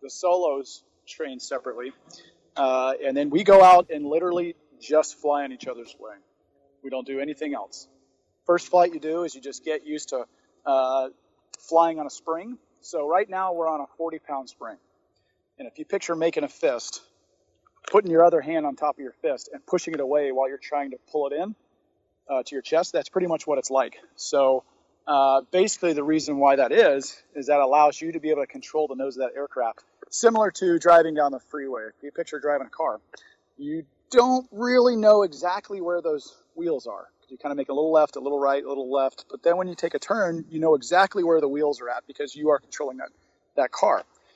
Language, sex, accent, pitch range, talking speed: English, male, American, 140-180 Hz, 220 wpm